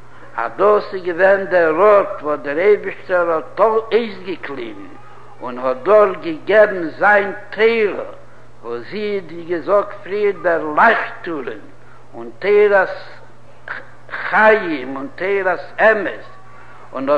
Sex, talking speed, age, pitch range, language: male, 120 wpm, 60-79, 165-210 Hz, Hebrew